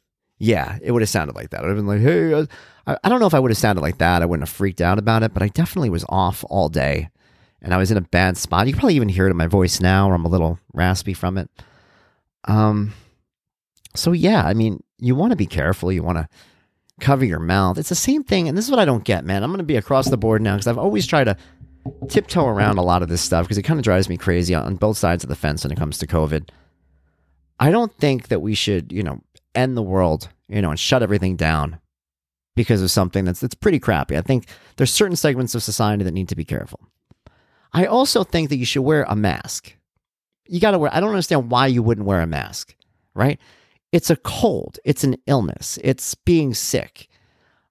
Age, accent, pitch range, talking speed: 40-59, American, 90-140 Hz, 245 wpm